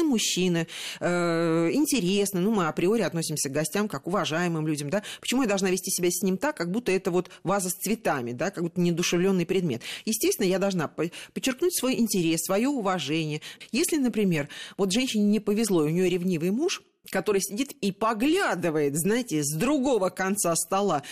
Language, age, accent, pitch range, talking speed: Russian, 40-59, native, 165-230 Hz, 175 wpm